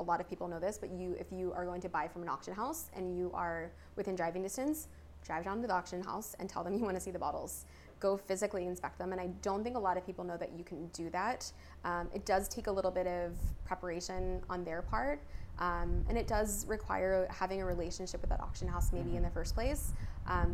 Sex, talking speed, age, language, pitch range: female, 255 wpm, 20-39, English, 170-195 Hz